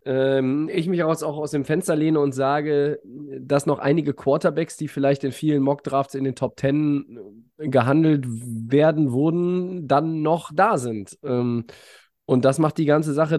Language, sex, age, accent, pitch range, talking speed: German, male, 20-39, German, 130-155 Hz, 180 wpm